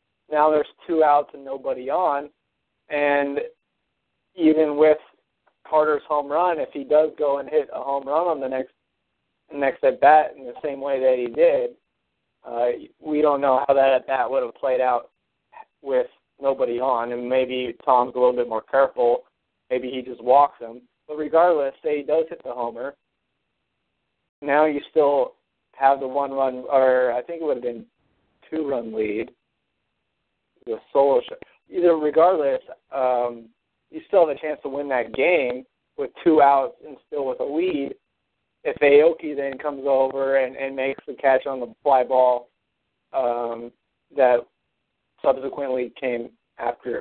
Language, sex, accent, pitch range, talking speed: English, male, American, 125-165 Hz, 160 wpm